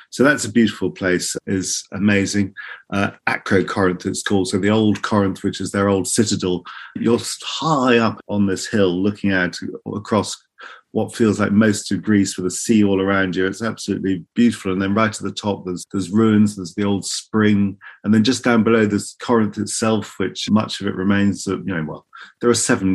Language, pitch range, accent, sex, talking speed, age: English, 95-115 Hz, British, male, 205 wpm, 40-59